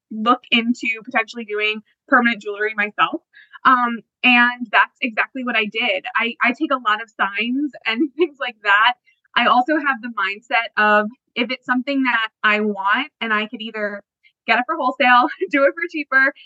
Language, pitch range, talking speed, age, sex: English, 225-290 Hz, 180 wpm, 20-39, female